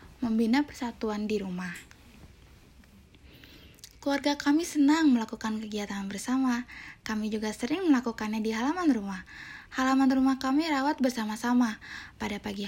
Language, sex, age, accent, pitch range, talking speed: Indonesian, female, 20-39, native, 215-265 Hz, 115 wpm